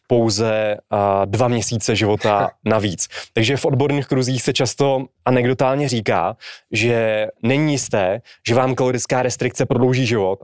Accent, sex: native, male